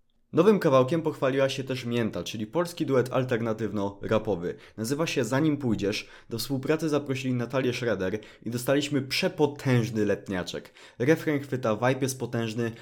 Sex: male